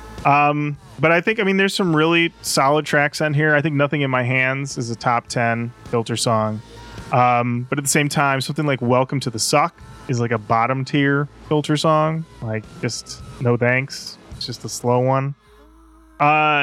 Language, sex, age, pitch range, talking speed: English, male, 20-39, 120-155 Hz, 195 wpm